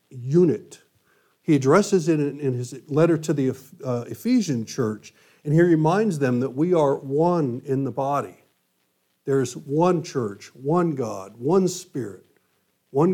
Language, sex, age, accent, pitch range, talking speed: English, male, 50-69, American, 130-170 Hz, 140 wpm